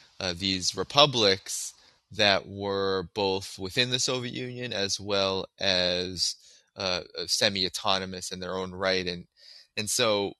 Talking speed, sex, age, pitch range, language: 125 wpm, male, 20-39, 95-110 Hz, English